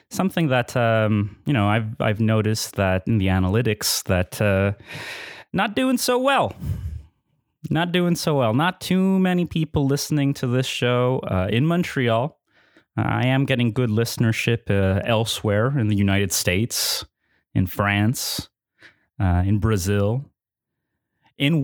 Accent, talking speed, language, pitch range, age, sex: American, 140 wpm, English, 100-145 Hz, 30-49, male